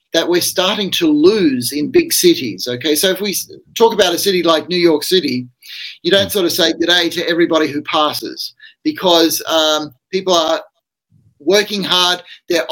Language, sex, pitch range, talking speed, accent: English, male, 160-200 Hz, 180 wpm, Australian